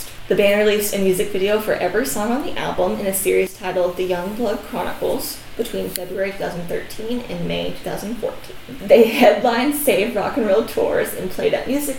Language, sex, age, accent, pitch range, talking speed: English, female, 10-29, American, 180-245 Hz, 185 wpm